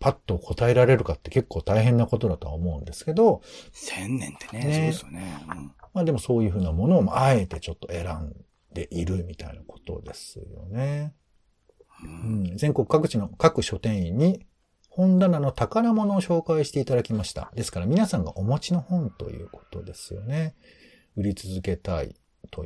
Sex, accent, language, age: male, native, Japanese, 50-69